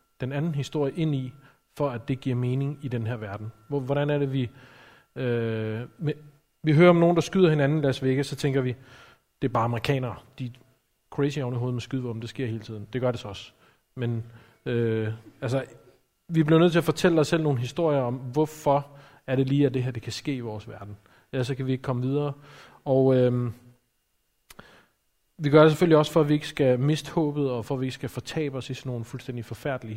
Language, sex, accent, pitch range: Danish, male, native, 115-145 Hz